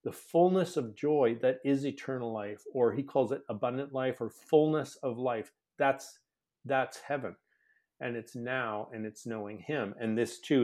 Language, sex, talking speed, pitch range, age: English, male, 175 wpm, 115-145 Hz, 50-69